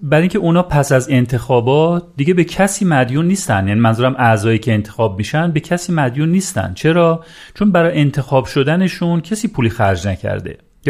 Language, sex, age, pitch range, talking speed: Persian, male, 40-59, 115-155 Hz, 165 wpm